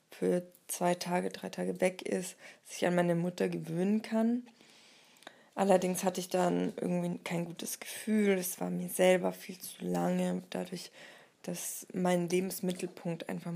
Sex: female